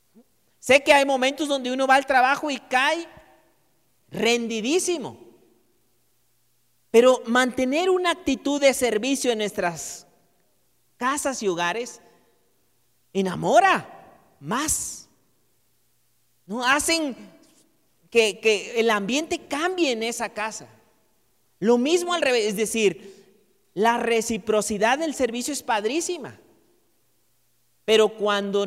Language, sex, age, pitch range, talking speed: Spanish, male, 40-59, 195-260 Hz, 105 wpm